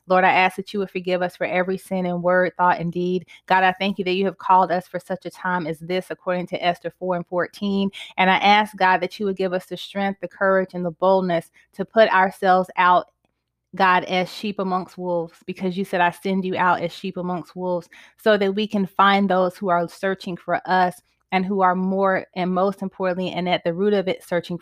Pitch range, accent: 175-190 Hz, American